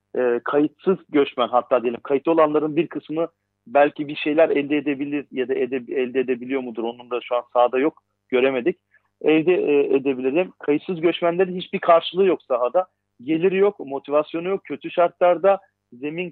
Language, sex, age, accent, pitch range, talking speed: Turkish, male, 40-59, native, 125-160 Hz, 160 wpm